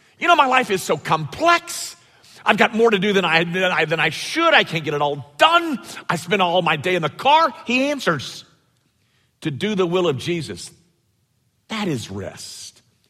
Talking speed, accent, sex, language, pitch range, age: 200 wpm, American, male, English, 150-245 Hz, 50-69